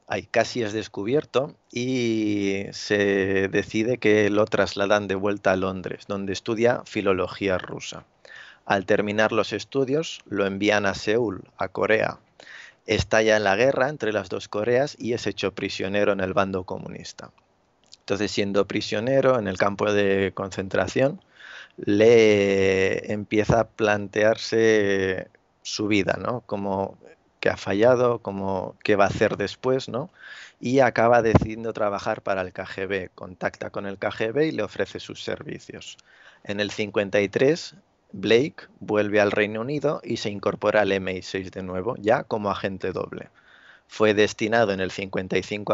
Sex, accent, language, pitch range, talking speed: male, Spanish, Spanish, 100-110 Hz, 145 wpm